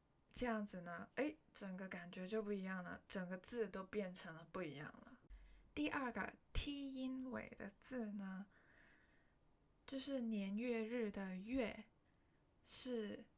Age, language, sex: 20-39, Chinese, female